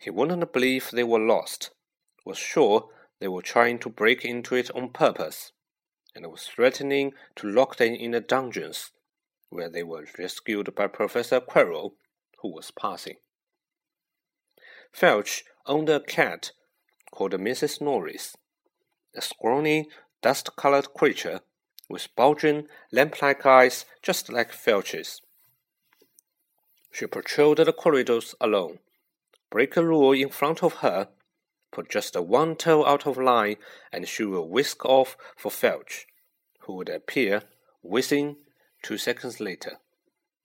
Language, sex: Chinese, male